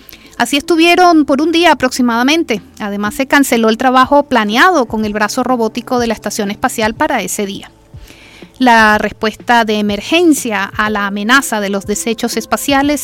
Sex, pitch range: female, 215-285 Hz